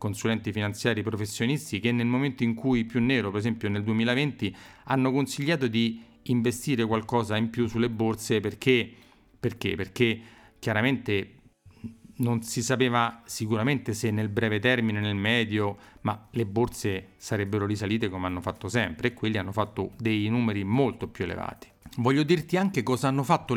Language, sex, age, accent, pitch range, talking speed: Italian, male, 40-59, native, 110-140 Hz, 155 wpm